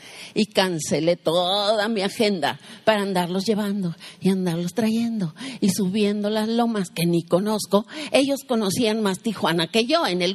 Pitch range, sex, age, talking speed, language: 195-310 Hz, female, 50-69, 150 wpm, Spanish